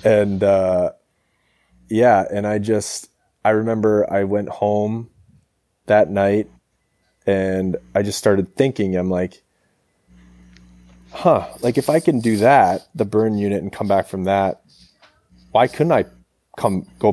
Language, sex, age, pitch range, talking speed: English, male, 20-39, 90-105 Hz, 140 wpm